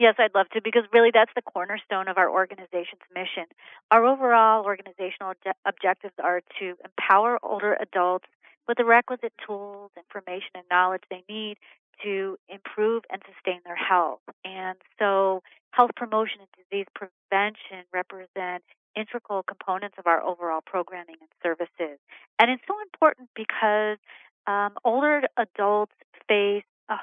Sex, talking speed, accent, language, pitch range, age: female, 140 wpm, American, English, 180-215 Hz, 40-59